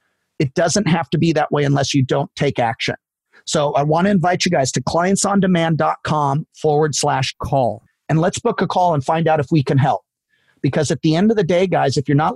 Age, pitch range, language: 40-59, 140-170 Hz, English